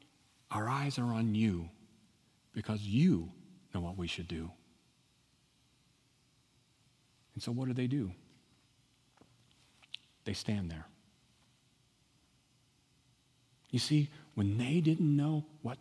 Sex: male